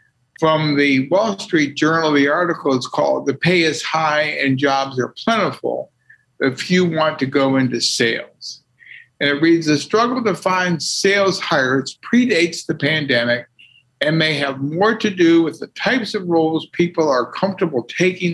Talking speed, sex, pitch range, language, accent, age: 165 wpm, male, 135-180 Hz, English, American, 60-79